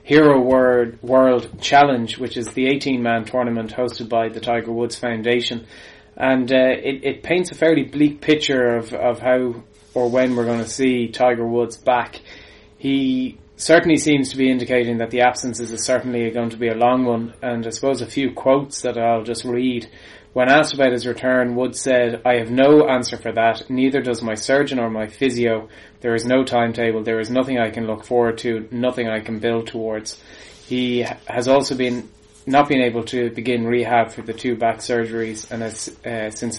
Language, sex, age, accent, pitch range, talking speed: English, male, 20-39, Irish, 115-125 Hz, 190 wpm